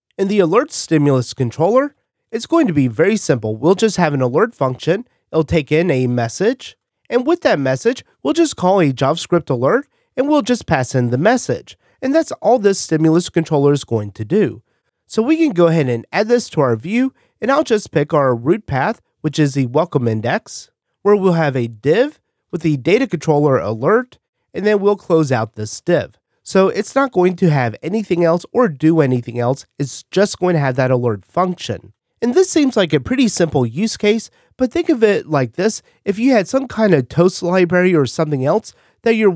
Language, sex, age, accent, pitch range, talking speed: English, male, 30-49, American, 140-210 Hz, 210 wpm